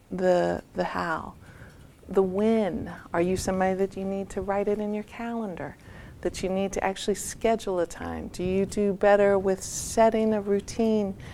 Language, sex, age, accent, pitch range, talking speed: English, female, 40-59, American, 185-215 Hz, 175 wpm